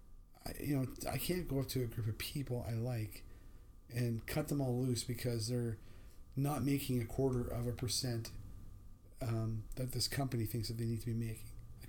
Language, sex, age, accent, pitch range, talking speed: English, male, 40-59, American, 110-130 Hz, 195 wpm